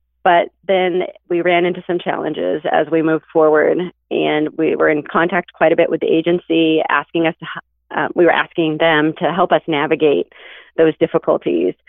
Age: 30-49